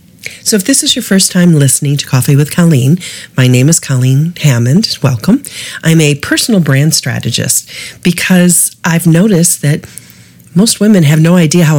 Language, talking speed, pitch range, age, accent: English, 170 wpm, 135-180 Hz, 40-59, American